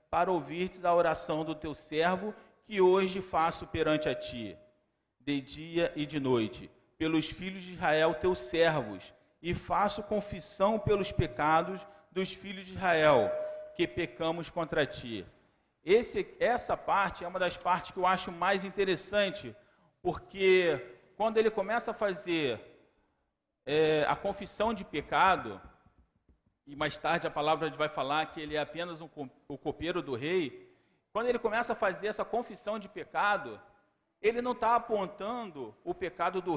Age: 40-59